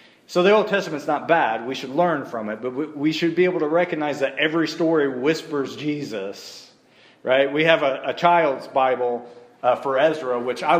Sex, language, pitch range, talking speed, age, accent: male, English, 145-195 Hz, 195 wpm, 40-59, American